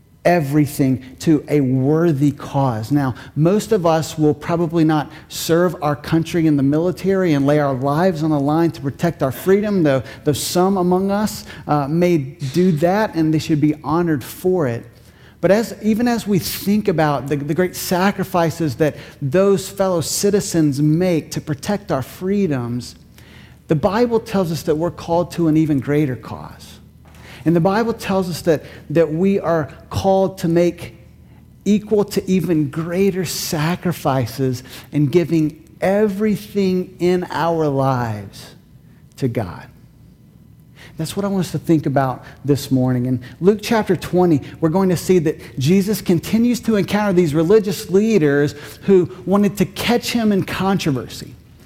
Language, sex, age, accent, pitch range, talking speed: English, male, 50-69, American, 145-190 Hz, 155 wpm